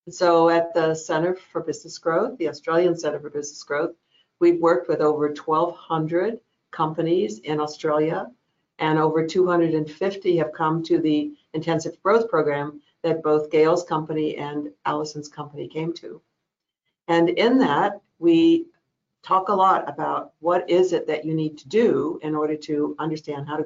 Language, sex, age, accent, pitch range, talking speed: English, female, 60-79, American, 155-175 Hz, 155 wpm